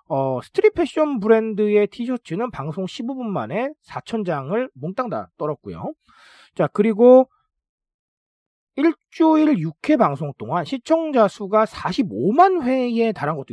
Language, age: Korean, 40-59